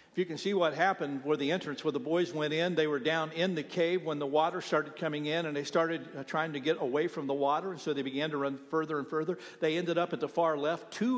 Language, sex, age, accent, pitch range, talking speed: English, male, 50-69, American, 150-170 Hz, 285 wpm